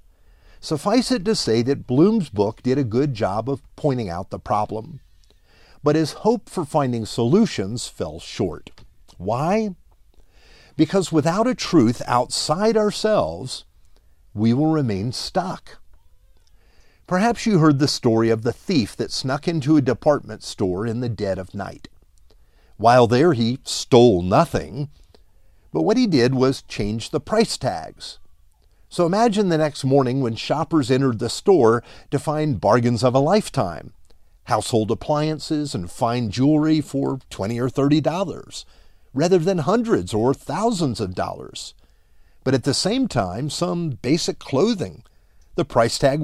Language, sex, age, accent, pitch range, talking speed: English, male, 50-69, American, 100-160 Hz, 145 wpm